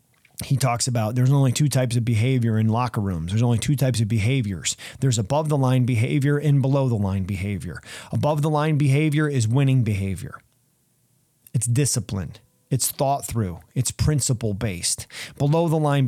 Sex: male